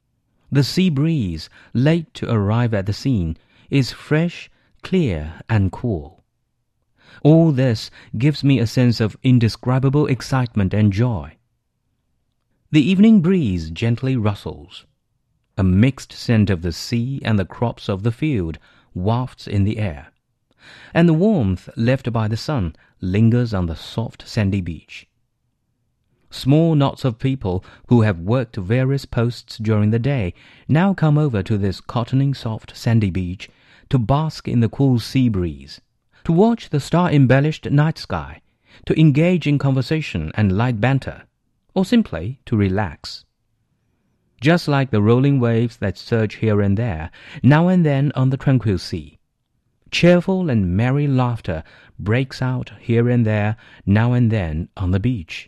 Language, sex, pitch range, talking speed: English, male, 105-135 Hz, 145 wpm